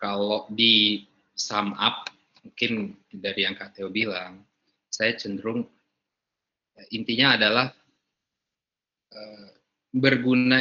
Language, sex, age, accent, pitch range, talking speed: Indonesian, male, 20-39, native, 100-120 Hz, 85 wpm